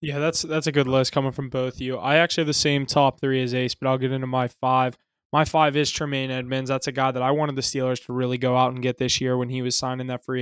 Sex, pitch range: male, 125-135 Hz